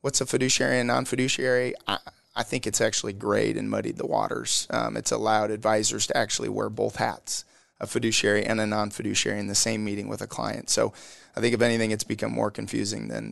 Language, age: English, 30-49